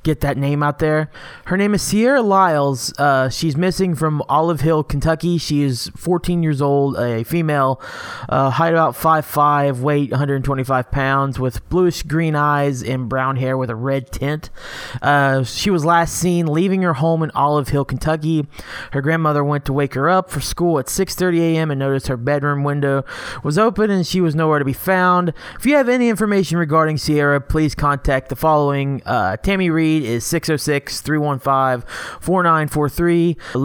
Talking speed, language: 170 wpm, English